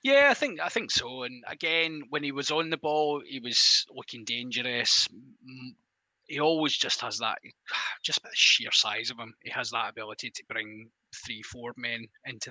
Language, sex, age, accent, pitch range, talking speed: English, male, 20-39, British, 115-145 Hz, 190 wpm